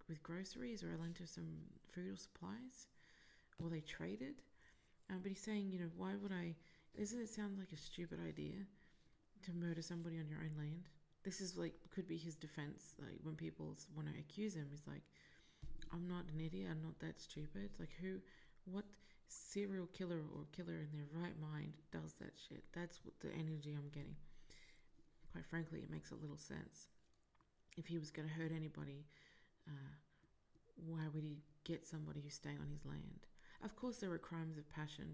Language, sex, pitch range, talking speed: English, female, 150-190 Hz, 190 wpm